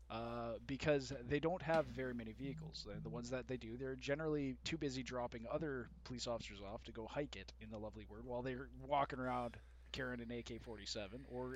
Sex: male